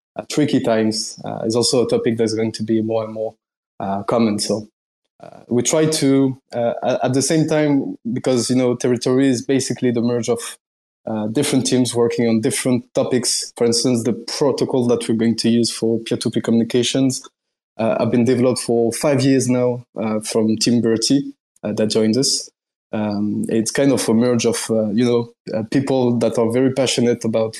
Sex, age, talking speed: male, 20-39, 190 wpm